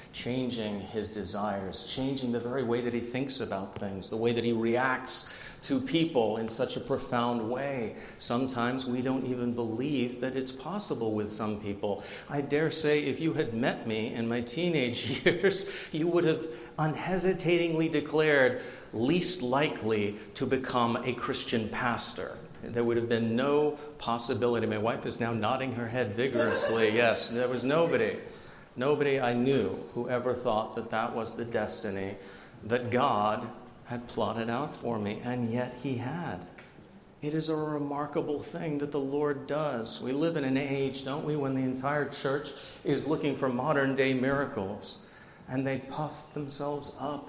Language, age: English, 40-59